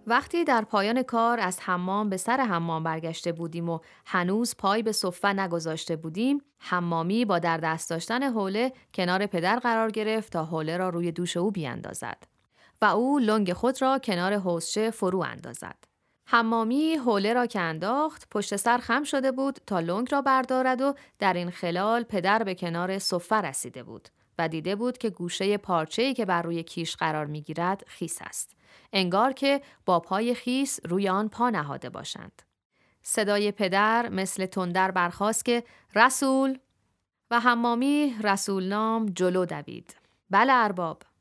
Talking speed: 155 wpm